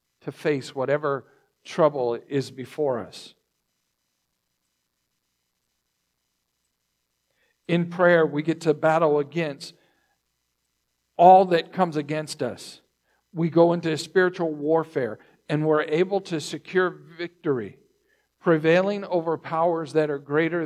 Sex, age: male, 50-69